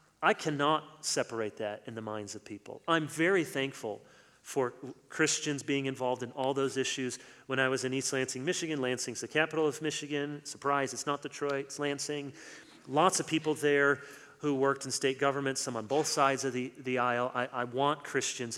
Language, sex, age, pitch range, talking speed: English, male, 40-59, 120-140 Hz, 190 wpm